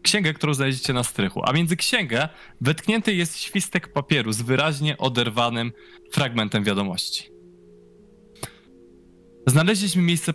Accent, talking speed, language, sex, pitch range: native, 110 wpm, Polish, male, 110-160 Hz